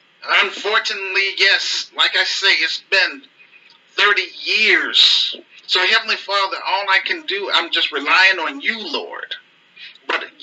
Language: English